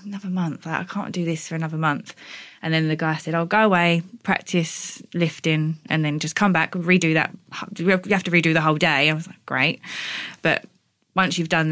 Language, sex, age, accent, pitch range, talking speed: English, female, 20-39, British, 160-200 Hz, 215 wpm